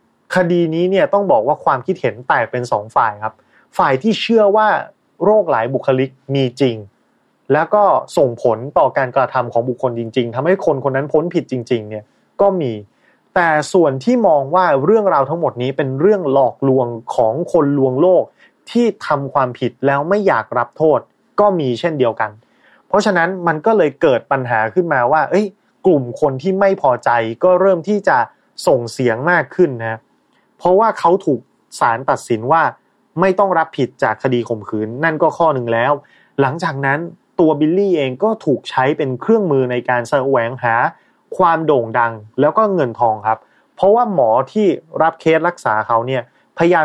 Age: 30-49